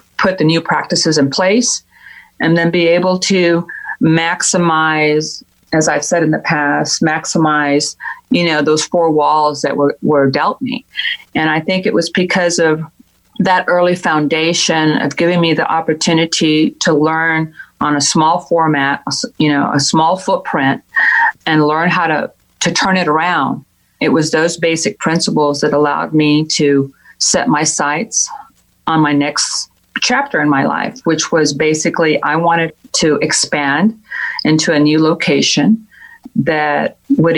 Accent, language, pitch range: American, English, 150-170 Hz